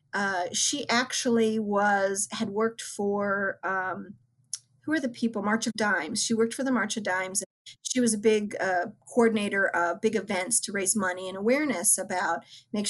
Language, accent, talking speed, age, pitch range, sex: English, American, 180 wpm, 50-69, 195-240 Hz, female